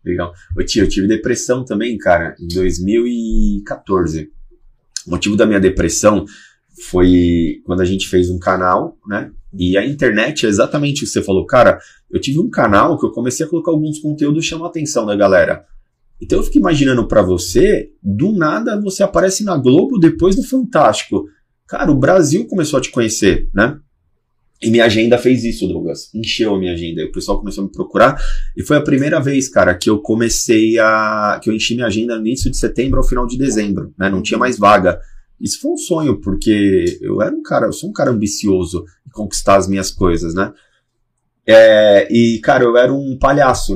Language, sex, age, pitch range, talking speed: Portuguese, male, 30-49, 100-135 Hz, 195 wpm